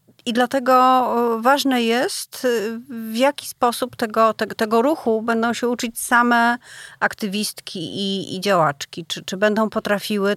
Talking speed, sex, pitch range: 135 wpm, female, 190-240 Hz